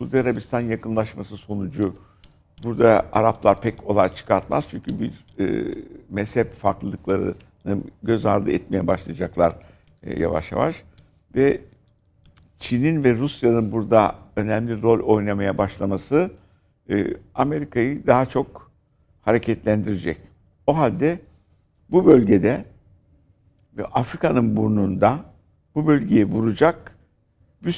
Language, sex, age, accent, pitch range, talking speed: Turkish, male, 60-79, native, 95-125 Hz, 95 wpm